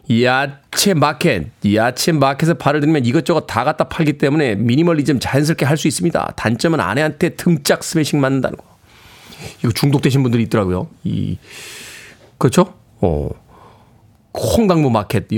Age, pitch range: 40-59, 120-175 Hz